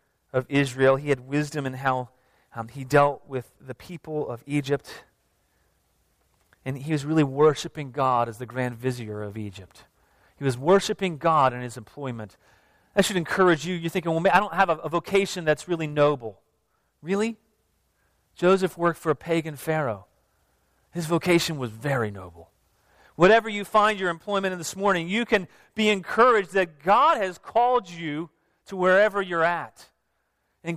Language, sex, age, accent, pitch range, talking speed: English, male, 40-59, American, 125-175 Hz, 165 wpm